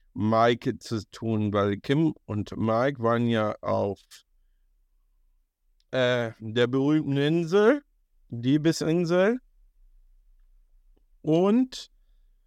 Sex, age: male, 50-69